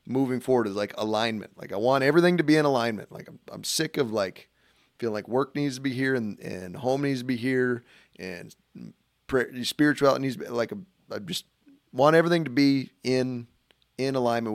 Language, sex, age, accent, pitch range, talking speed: English, male, 30-49, American, 105-130 Hz, 200 wpm